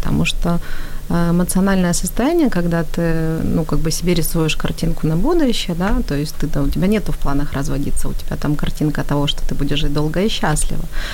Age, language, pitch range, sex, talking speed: 30-49, Ukrainian, 150-180 Hz, female, 200 wpm